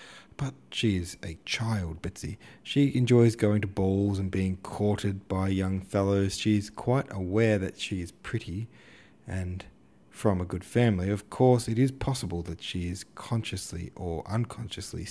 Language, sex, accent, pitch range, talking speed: English, male, Australian, 90-110 Hz, 165 wpm